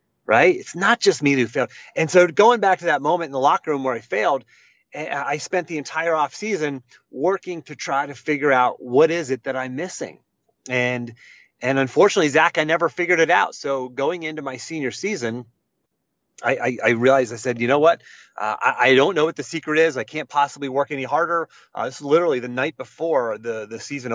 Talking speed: 215 wpm